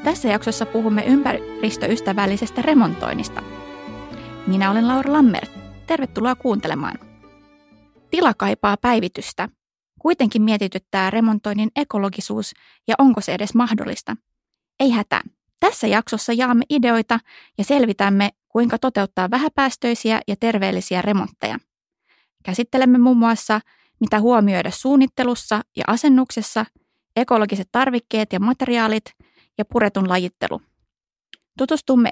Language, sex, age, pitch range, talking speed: Finnish, female, 20-39, 200-245 Hz, 100 wpm